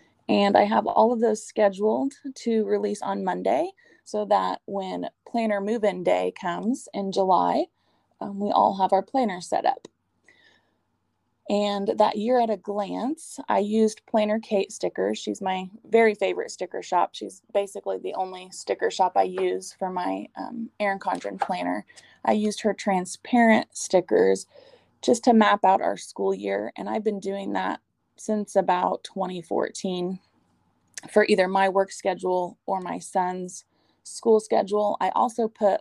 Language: English